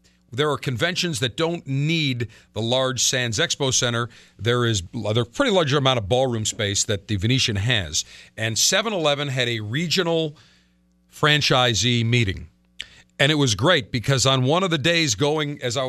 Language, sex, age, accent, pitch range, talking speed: English, male, 50-69, American, 110-160 Hz, 165 wpm